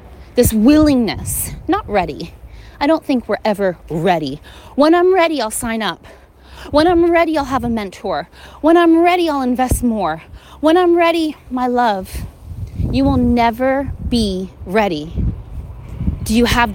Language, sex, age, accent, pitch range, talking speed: English, female, 30-49, American, 215-325 Hz, 150 wpm